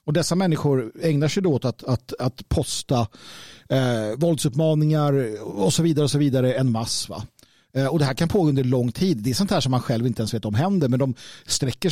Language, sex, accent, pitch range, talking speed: Swedish, male, native, 120-170 Hz, 225 wpm